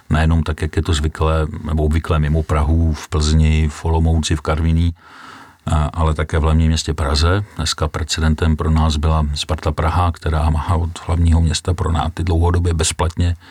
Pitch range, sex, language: 80-90 Hz, male, Czech